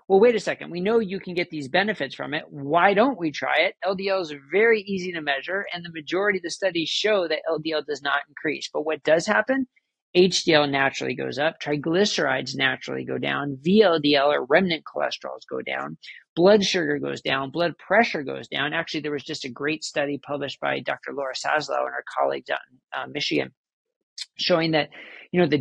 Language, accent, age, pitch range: English, American, 40-59, 145-195 Hz